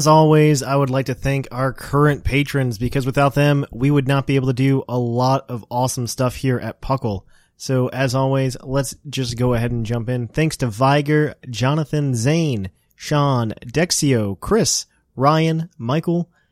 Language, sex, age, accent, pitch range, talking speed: English, male, 20-39, American, 125-155 Hz, 175 wpm